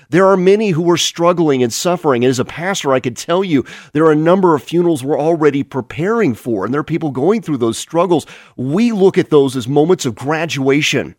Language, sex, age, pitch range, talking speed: English, male, 40-59, 135-190 Hz, 225 wpm